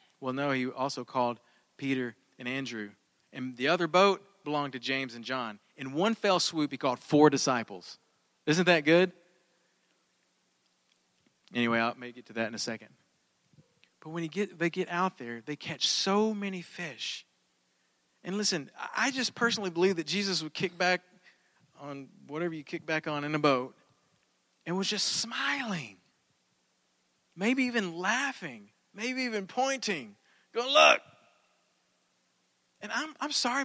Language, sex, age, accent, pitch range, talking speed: English, male, 40-59, American, 140-220 Hz, 150 wpm